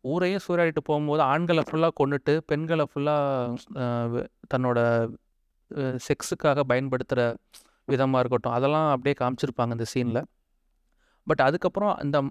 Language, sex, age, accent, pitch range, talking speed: Tamil, male, 30-49, native, 130-165 Hz, 100 wpm